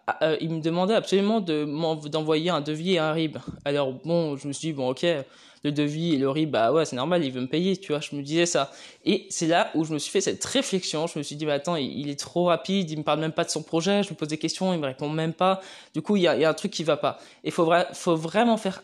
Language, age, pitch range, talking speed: French, 20-39, 150-185 Hz, 320 wpm